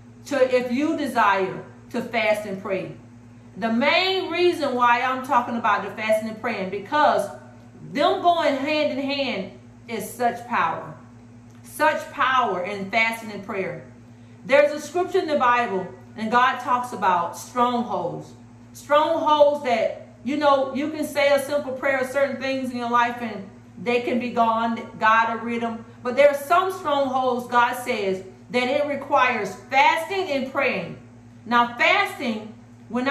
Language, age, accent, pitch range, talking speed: English, 40-59, American, 200-280 Hz, 155 wpm